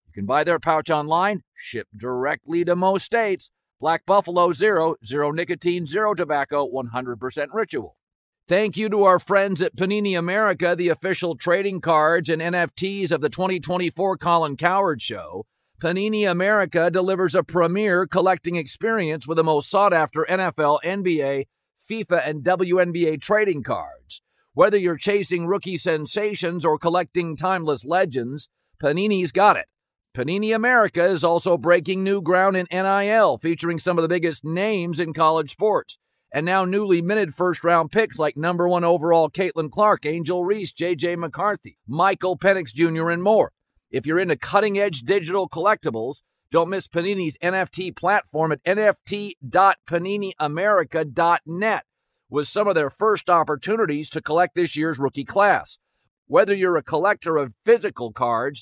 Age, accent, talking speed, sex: 50-69, American, 145 wpm, male